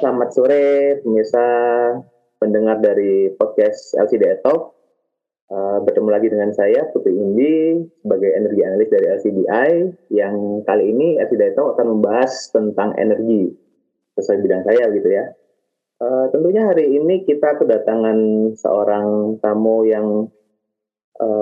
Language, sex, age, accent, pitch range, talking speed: Indonesian, male, 20-39, native, 105-170 Hz, 125 wpm